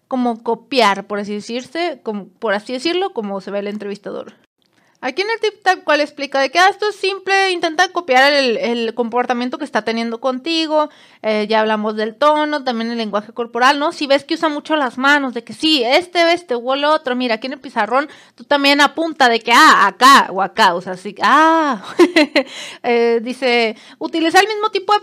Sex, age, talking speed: female, 30-49, 205 wpm